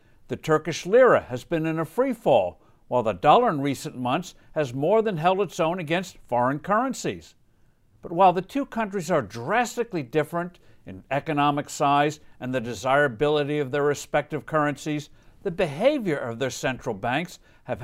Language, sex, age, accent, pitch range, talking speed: English, male, 60-79, American, 130-185 Hz, 165 wpm